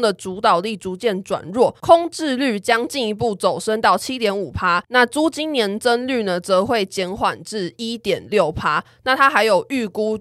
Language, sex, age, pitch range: Chinese, female, 20-39, 185-230 Hz